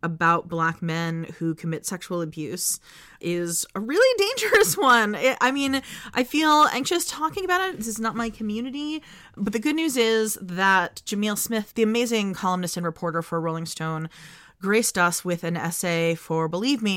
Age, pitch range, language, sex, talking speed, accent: 30-49, 160-210 Hz, English, female, 175 wpm, American